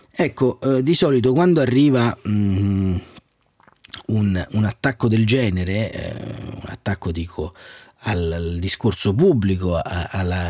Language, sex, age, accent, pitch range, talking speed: Italian, male, 30-49, native, 95-125 Hz, 125 wpm